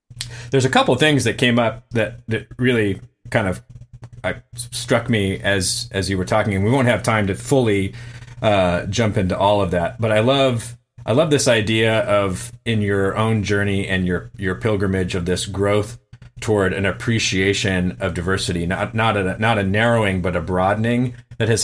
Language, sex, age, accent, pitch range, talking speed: English, male, 30-49, American, 95-120 Hz, 190 wpm